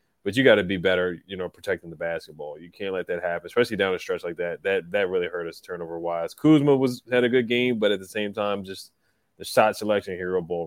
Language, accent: English, American